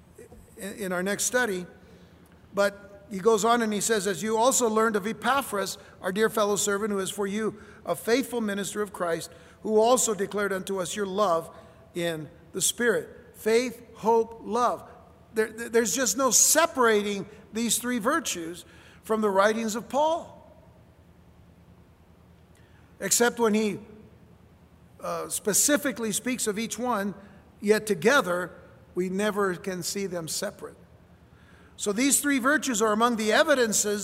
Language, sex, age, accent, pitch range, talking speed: English, male, 60-79, American, 185-235 Hz, 140 wpm